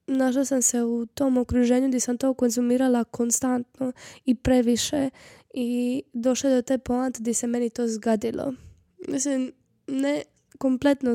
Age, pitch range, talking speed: 10-29, 245-275 Hz, 140 wpm